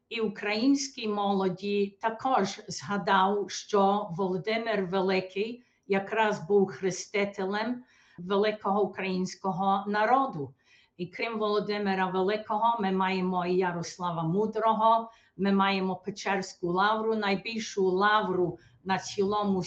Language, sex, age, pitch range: Ukrainian, female, 50-69, 185-210 Hz